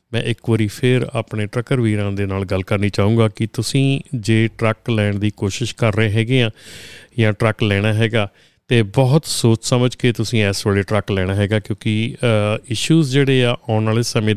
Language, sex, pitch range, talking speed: Punjabi, male, 105-125 Hz, 175 wpm